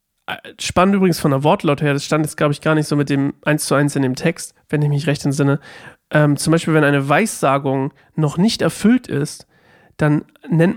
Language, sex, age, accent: German, male, 40-59, German